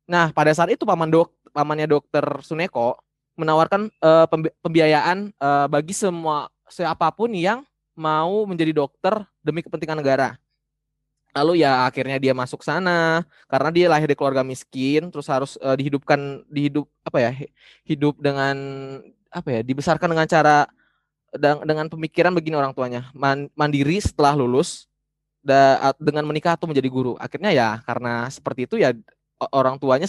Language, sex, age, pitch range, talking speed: Indonesian, male, 20-39, 135-165 Hz, 145 wpm